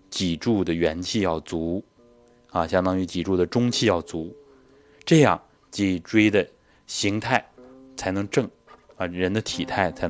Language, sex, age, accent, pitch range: Chinese, male, 20-39, native, 90-125 Hz